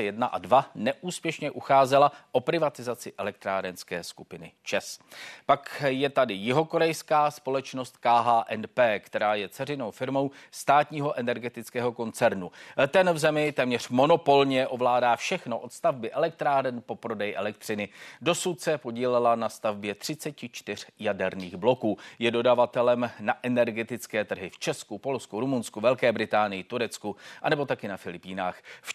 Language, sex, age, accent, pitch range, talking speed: Czech, male, 40-59, native, 110-145 Hz, 130 wpm